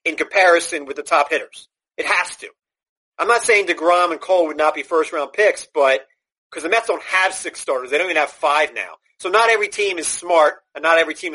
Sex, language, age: male, English, 40-59